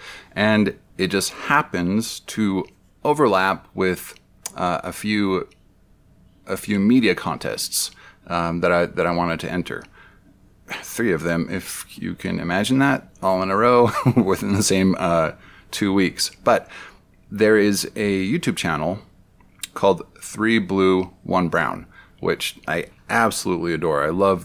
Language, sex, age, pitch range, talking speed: English, male, 30-49, 90-105 Hz, 140 wpm